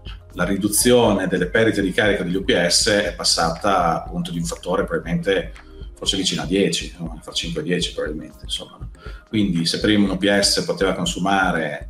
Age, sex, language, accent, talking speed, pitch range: 40-59, male, Italian, native, 160 wpm, 85-100 Hz